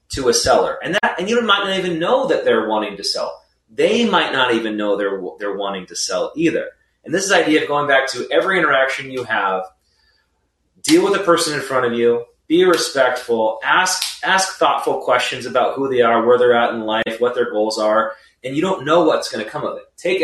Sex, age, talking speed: male, 30-49, 230 wpm